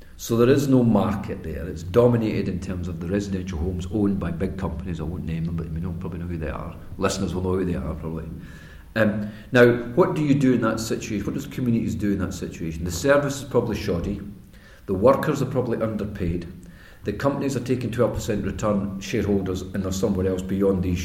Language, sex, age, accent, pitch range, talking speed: English, male, 40-59, British, 90-110 Hz, 215 wpm